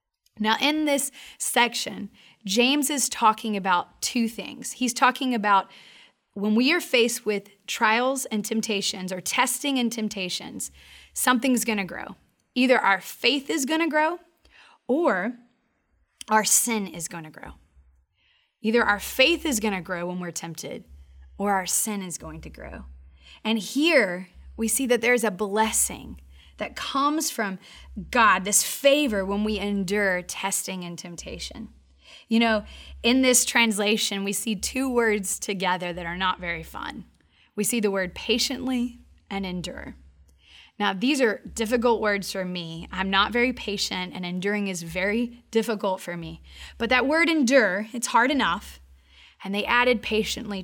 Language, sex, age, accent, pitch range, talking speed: English, female, 20-39, American, 180-245 Hz, 150 wpm